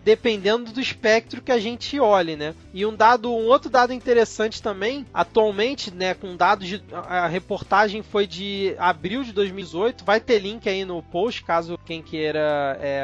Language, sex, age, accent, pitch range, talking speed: Portuguese, male, 20-39, Brazilian, 195-245 Hz, 175 wpm